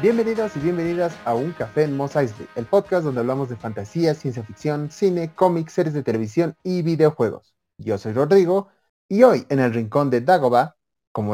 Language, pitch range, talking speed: Spanish, 115-160 Hz, 185 wpm